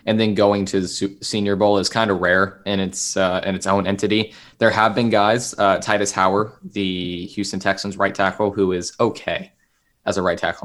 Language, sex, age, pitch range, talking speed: English, male, 20-39, 95-105 Hz, 210 wpm